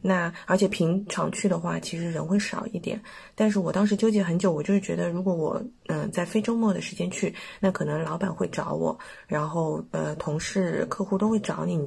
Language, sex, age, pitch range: Chinese, female, 20-39, 170-210 Hz